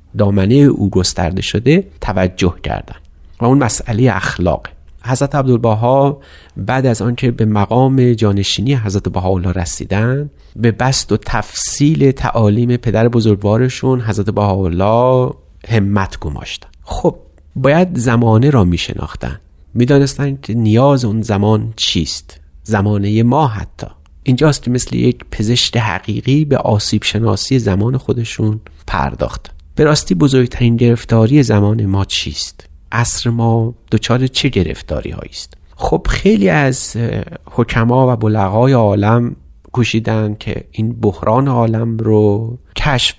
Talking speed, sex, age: 115 wpm, male, 40-59